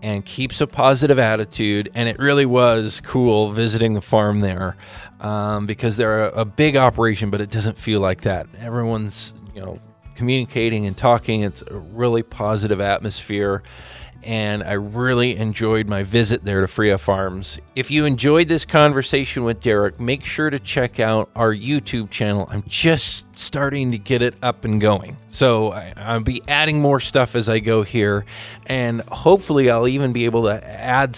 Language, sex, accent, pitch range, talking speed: English, male, American, 105-125 Hz, 175 wpm